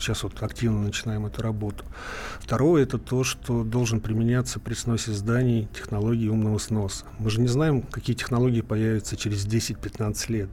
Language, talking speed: Russian, 165 wpm